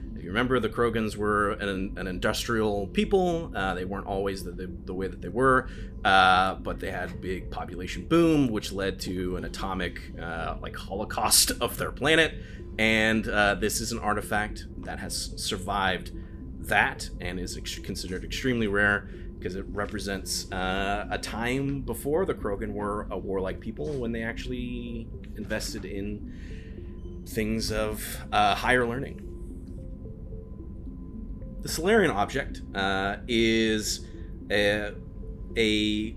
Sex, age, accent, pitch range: male, 30-49, American, 90-110 Hz